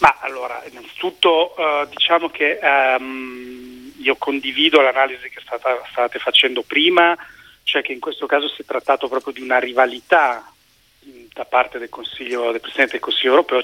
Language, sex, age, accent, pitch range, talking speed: Italian, male, 40-59, native, 125-170 Hz, 165 wpm